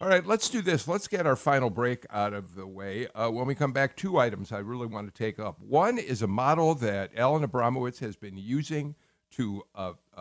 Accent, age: American, 50-69